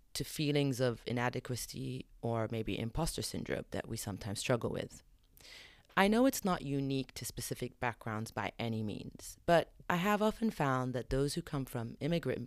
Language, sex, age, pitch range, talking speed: English, female, 30-49, 115-150 Hz, 170 wpm